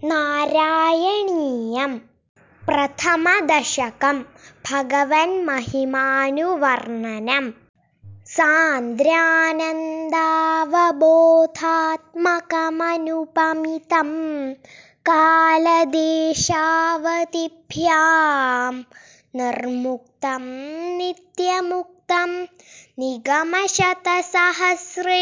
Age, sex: 20-39, female